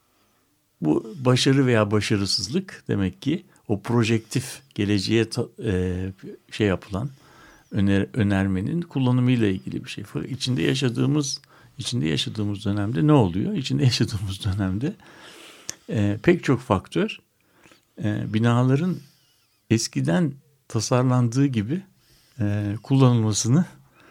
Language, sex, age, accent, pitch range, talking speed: Turkish, male, 60-79, native, 100-135 Hz, 100 wpm